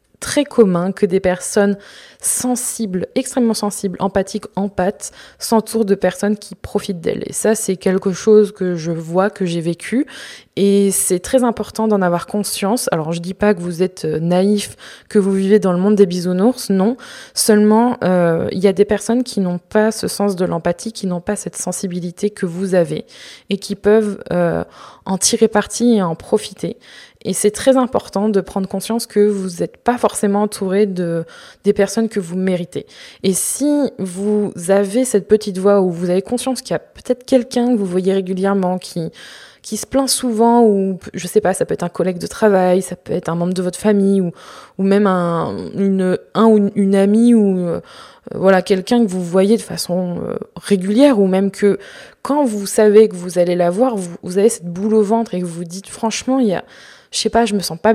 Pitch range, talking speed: 185-225 Hz, 210 wpm